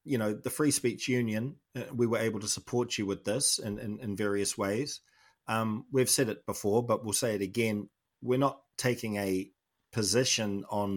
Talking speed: 195 wpm